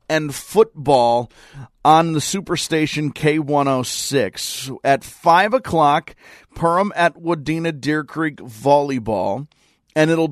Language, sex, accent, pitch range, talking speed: English, male, American, 130-165 Hz, 95 wpm